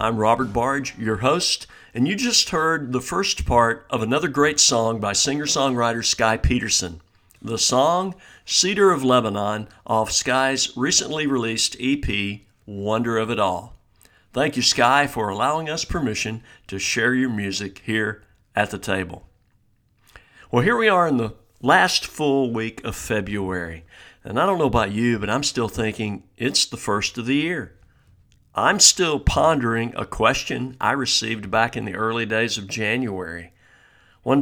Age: 60-79